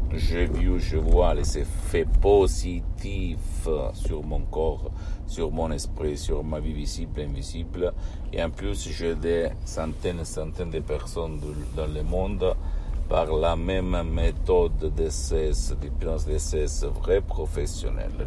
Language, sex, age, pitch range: Italian, male, 60-79, 75-90 Hz